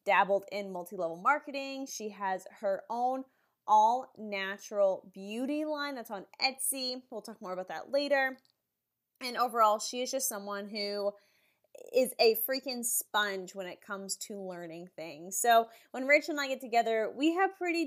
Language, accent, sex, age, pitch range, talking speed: English, American, female, 20-39, 205-270 Hz, 160 wpm